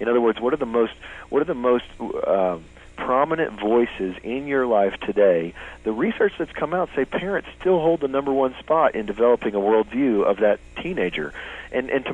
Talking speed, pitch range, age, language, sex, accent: 205 wpm, 95-125 Hz, 40-59, English, male, American